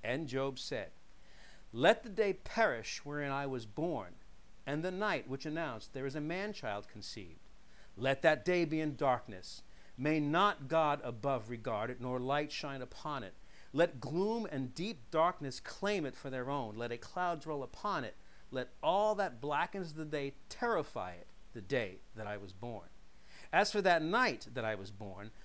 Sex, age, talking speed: male, 50-69, 180 wpm